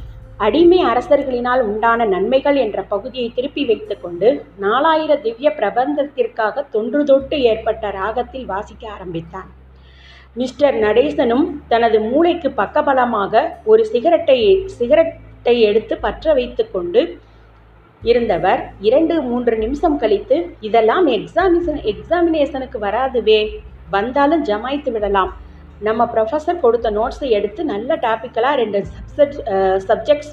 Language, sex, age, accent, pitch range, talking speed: Tamil, female, 30-49, native, 210-300 Hz, 100 wpm